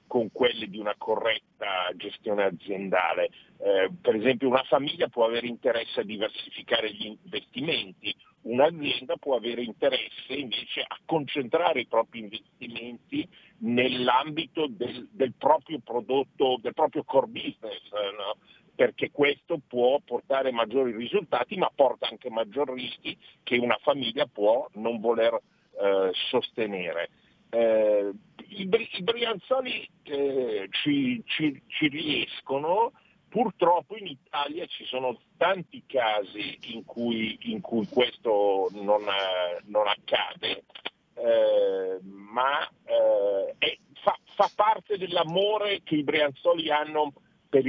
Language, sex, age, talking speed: Italian, male, 50-69, 110 wpm